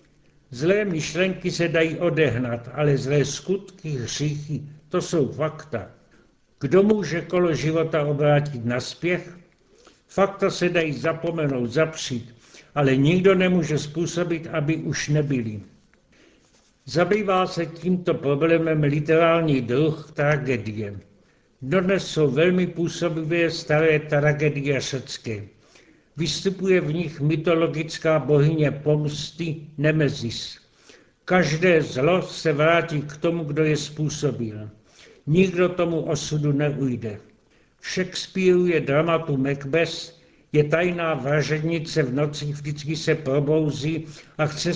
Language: Czech